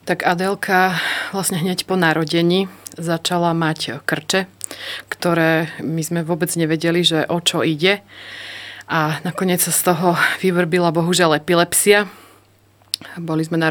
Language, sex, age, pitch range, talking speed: Slovak, female, 30-49, 160-180 Hz, 125 wpm